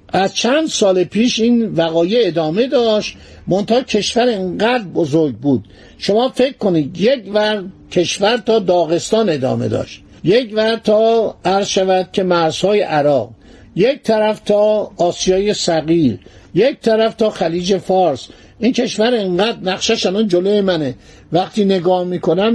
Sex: male